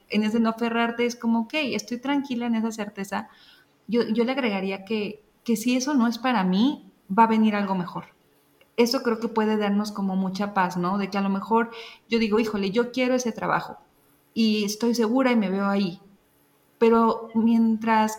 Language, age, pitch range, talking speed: Spanish, 30-49, 195-230 Hz, 200 wpm